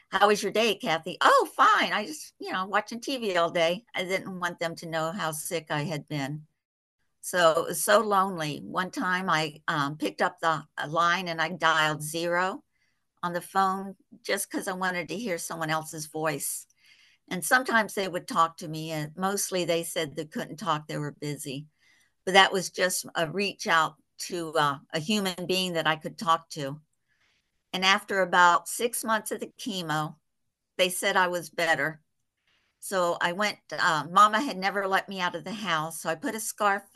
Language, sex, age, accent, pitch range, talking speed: English, female, 60-79, American, 160-190 Hz, 195 wpm